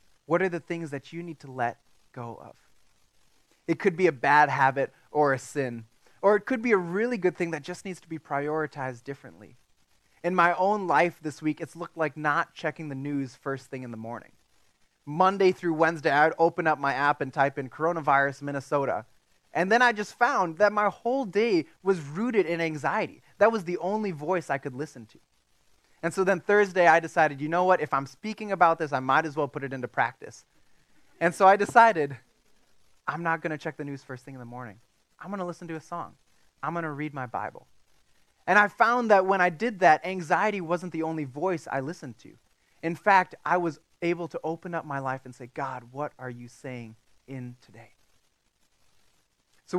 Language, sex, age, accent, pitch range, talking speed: English, male, 20-39, American, 135-180 Hz, 210 wpm